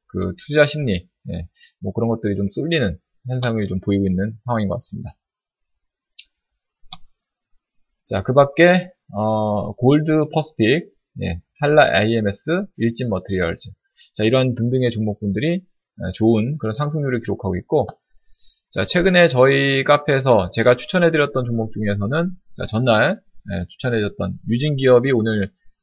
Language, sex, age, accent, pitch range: Korean, male, 20-39, native, 100-145 Hz